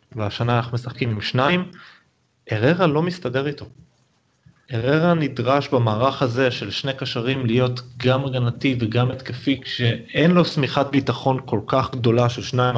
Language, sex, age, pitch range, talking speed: Hebrew, male, 30-49, 115-145 Hz, 140 wpm